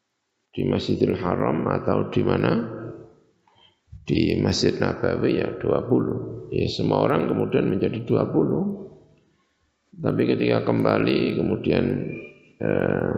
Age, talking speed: 50-69, 100 wpm